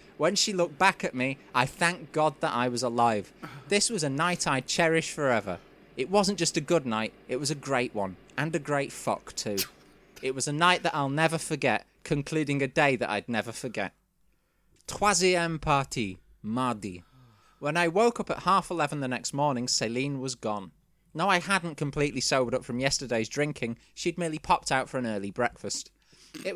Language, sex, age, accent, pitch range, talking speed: English, male, 20-39, British, 120-165 Hz, 190 wpm